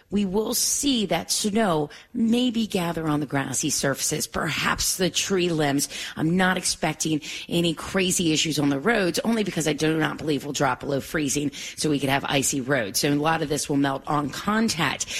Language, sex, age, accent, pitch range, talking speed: English, female, 30-49, American, 150-195 Hz, 195 wpm